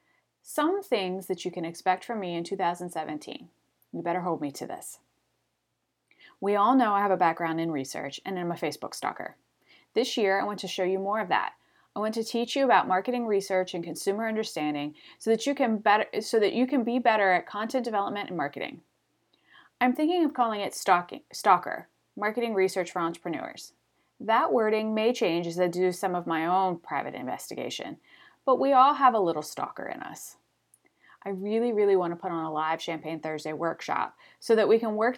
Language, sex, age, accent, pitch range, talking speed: English, female, 30-49, American, 175-235 Hz, 200 wpm